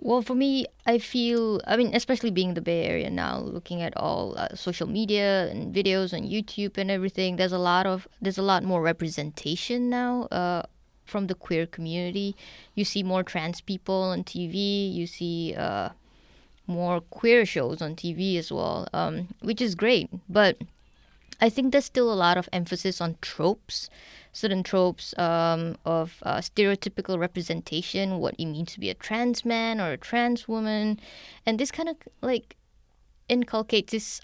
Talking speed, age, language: 170 wpm, 20-39, English